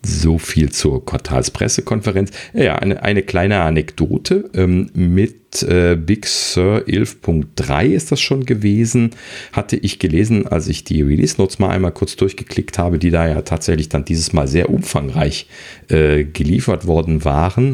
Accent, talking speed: German, 145 wpm